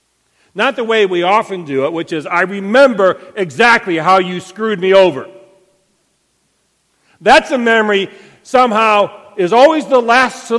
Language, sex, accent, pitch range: English, male, American, 150-230 Hz